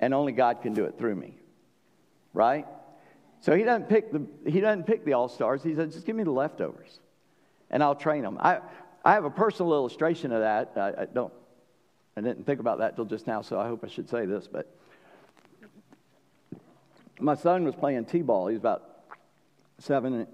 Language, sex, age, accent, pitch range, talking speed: English, male, 50-69, American, 125-165 Hz, 195 wpm